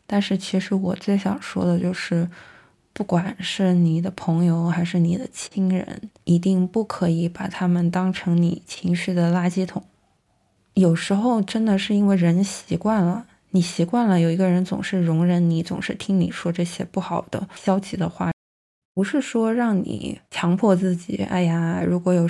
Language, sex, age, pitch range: Chinese, female, 20-39, 175-200 Hz